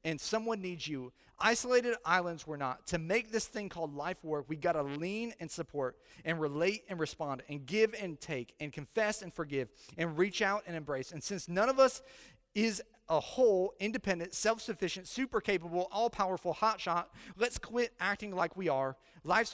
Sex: male